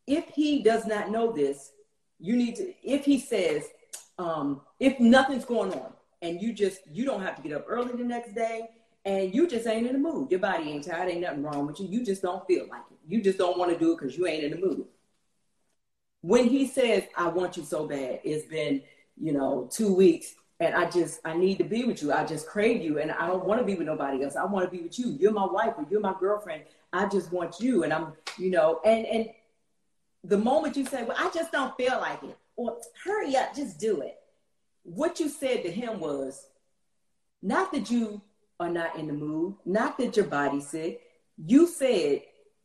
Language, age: English, 40-59